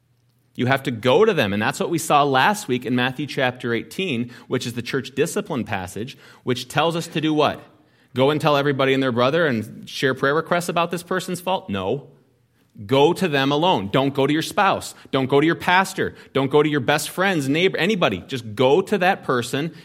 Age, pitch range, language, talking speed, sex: 30-49, 120-160 Hz, English, 220 wpm, male